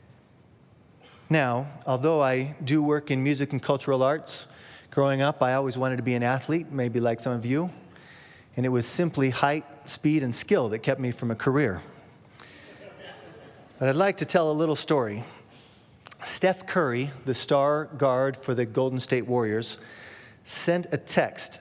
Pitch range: 125-155 Hz